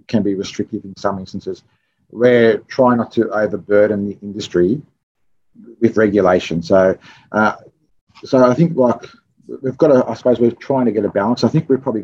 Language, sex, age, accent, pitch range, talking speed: English, male, 30-49, Australian, 105-125 Hz, 180 wpm